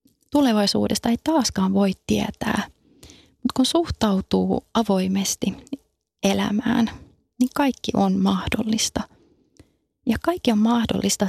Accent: native